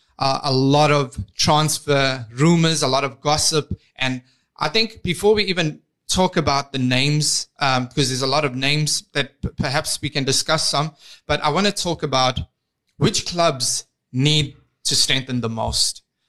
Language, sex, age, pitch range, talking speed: English, male, 20-39, 135-170 Hz, 170 wpm